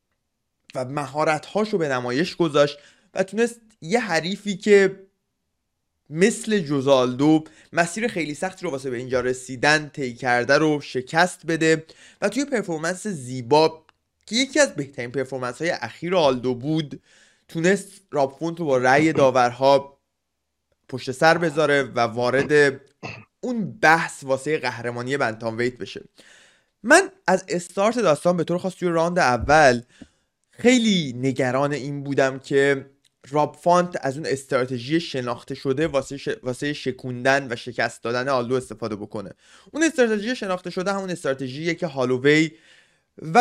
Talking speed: 130 wpm